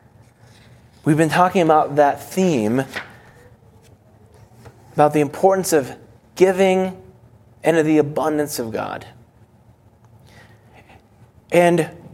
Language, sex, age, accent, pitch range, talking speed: English, male, 30-49, American, 115-175 Hz, 90 wpm